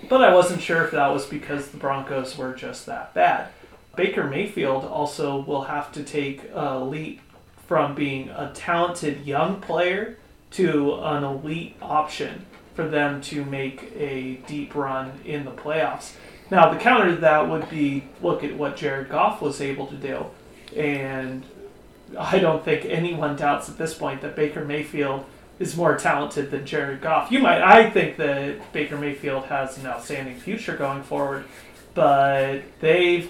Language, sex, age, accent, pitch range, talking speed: English, male, 30-49, American, 140-160 Hz, 165 wpm